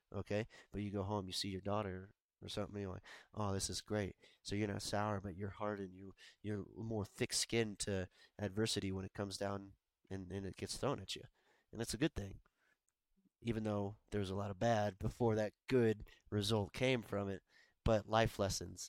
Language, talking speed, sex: English, 205 wpm, male